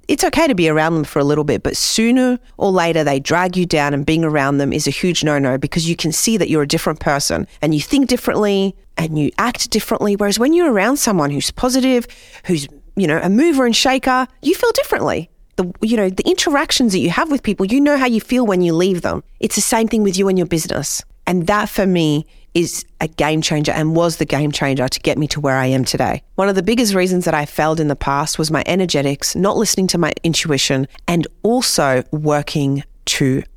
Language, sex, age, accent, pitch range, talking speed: English, female, 30-49, Australian, 150-210 Hz, 235 wpm